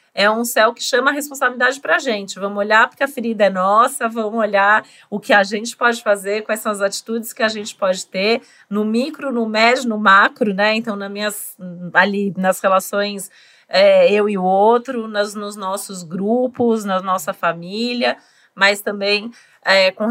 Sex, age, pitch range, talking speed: female, 40-59, 195-240 Hz, 180 wpm